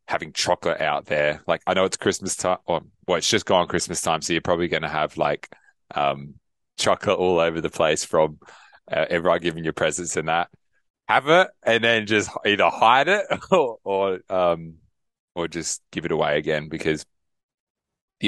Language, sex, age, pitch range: English, male, 20-39, 80-90 Hz